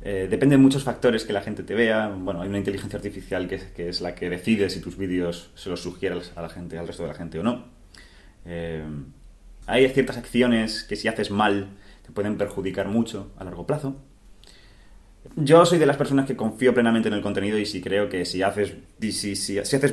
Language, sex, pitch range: English, male, 95-110 Hz